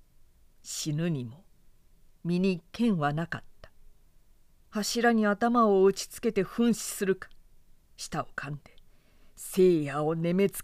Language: Japanese